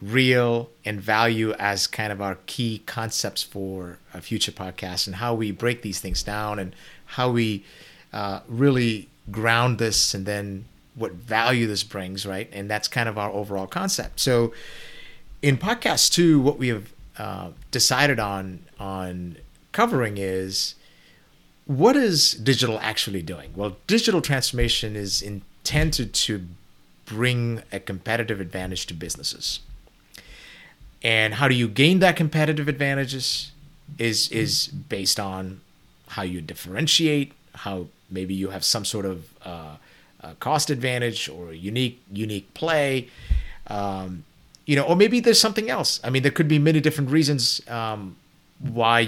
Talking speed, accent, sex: 145 wpm, American, male